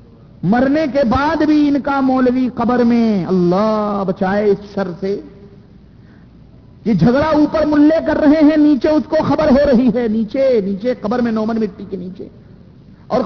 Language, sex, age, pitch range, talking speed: Urdu, male, 50-69, 200-275 Hz, 165 wpm